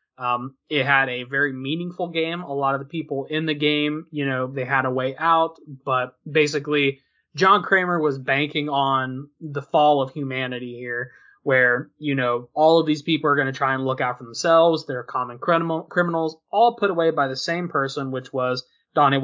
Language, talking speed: English, 195 wpm